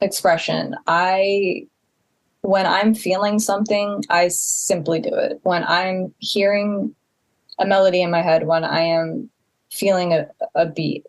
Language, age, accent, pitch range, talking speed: English, 20-39, American, 160-195 Hz, 135 wpm